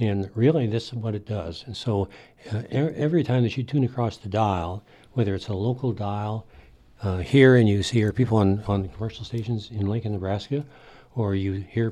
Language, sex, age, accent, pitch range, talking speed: English, male, 60-79, American, 100-125 Hz, 195 wpm